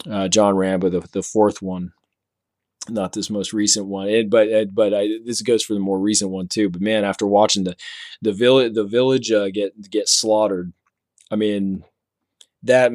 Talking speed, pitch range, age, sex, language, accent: 190 wpm, 95-105 Hz, 20-39, male, English, American